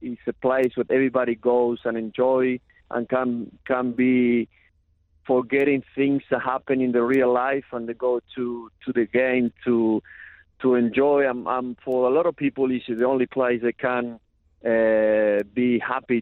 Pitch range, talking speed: 115-130 Hz, 175 wpm